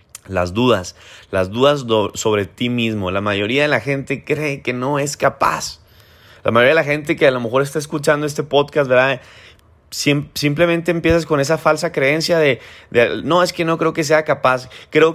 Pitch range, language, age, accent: 105-145 Hz, Spanish, 20-39, Mexican